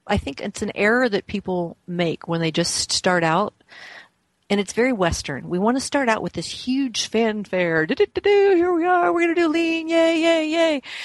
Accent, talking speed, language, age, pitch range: American, 200 wpm, English, 40-59, 170-220 Hz